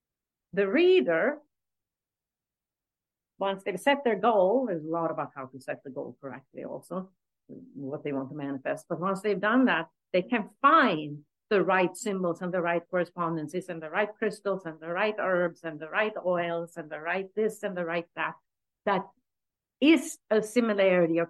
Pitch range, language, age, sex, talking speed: 160-210 Hz, English, 50-69, female, 180 wpm